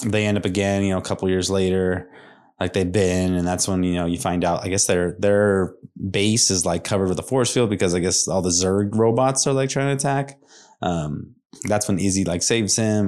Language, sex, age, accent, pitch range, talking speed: English, male, 20-39, American, 90-105 Hz, 240 wpm